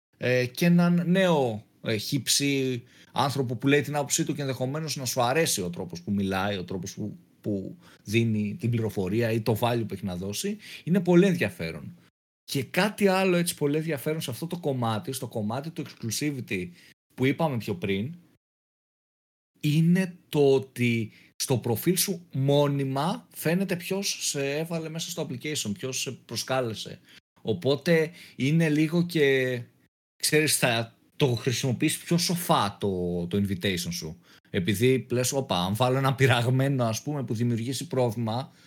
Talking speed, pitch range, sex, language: 150 wpm, 110-155 Hz, male, Greek